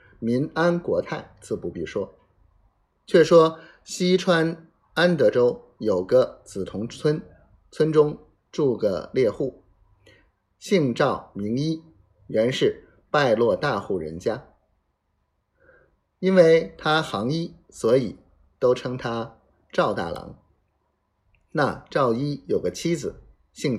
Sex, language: male, Chinese